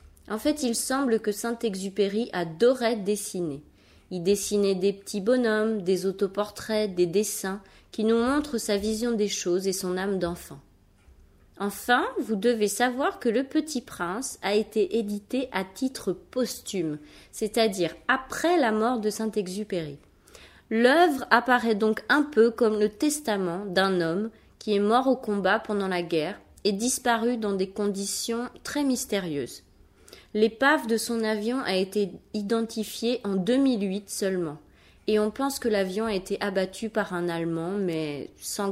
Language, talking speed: French, 150 wpm